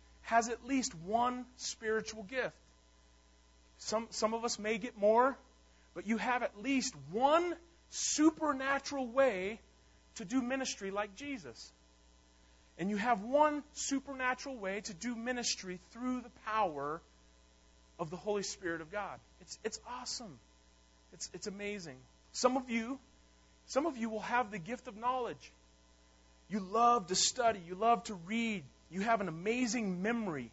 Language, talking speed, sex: English, 145 wpm, male